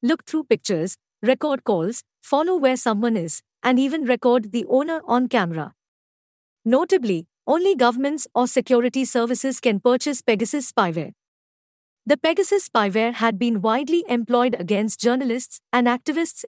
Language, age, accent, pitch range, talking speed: English, 50-69, Indian, 210-275 Hz, 135 wpm